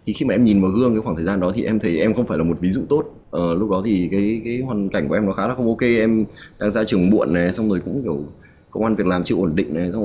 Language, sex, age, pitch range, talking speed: Vietnamese, male, 20-39, 85-105 Hz, 340 wpm